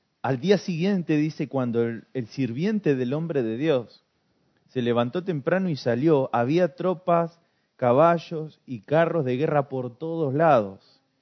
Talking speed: 145 wpm